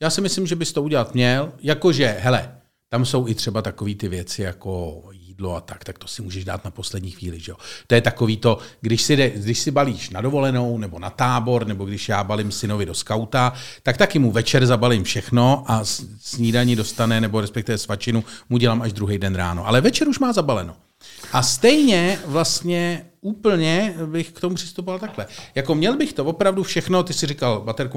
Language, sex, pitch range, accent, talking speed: Czech, male, 105-145 Hz, native, 205 wpm